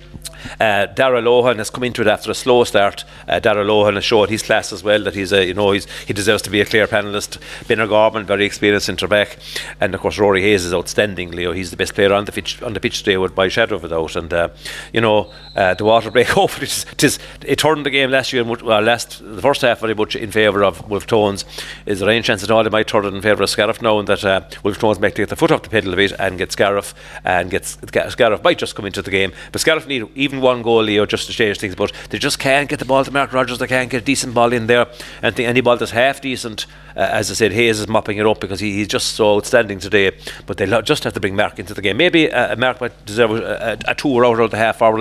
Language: English